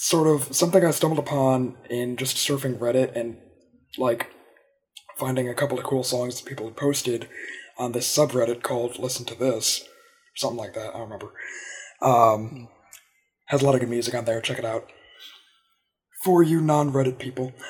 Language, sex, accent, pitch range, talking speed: English, male, American, 120-140 Hz, 175 wpm